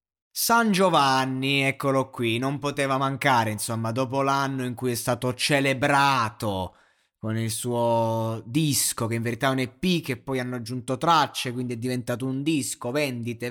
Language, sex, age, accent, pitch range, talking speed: Italian, male, 20-39, native, 125-150 Hz, 160 wpm